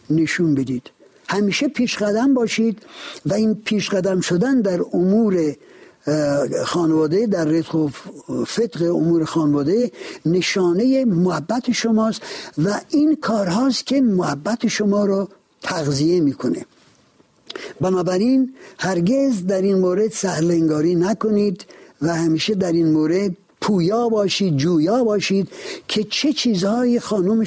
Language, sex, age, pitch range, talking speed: Persian, male, 60-79, 170-230 Hz, 110 wpm